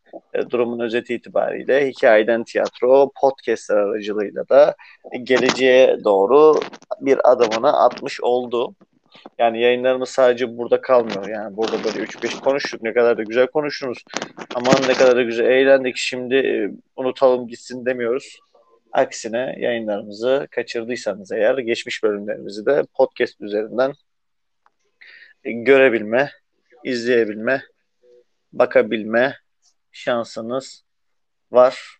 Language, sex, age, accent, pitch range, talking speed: Turkish, male, 40-59, native, 125-150 Hz, 100 wpm